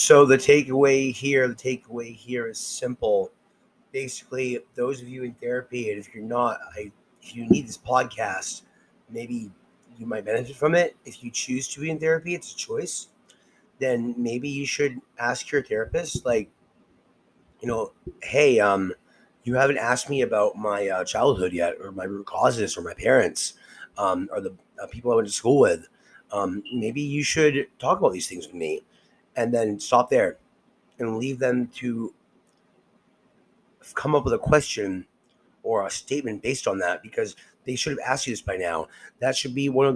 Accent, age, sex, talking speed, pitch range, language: American, 30-49, male, 185 wpm, 115-140 Hz, English